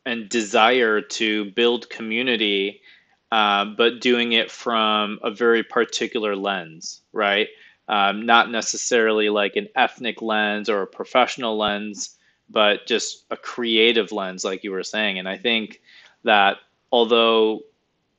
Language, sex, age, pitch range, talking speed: English, male, 20-39, 100-120 Hz, 130 wpm